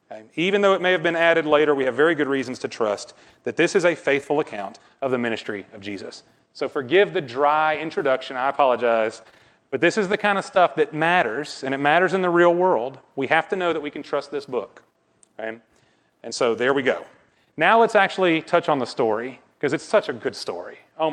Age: 30-49